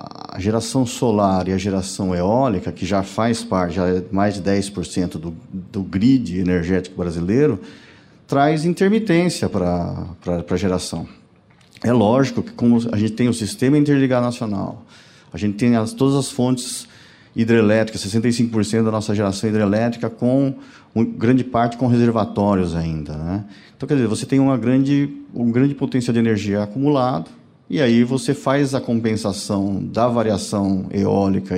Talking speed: 150 wpm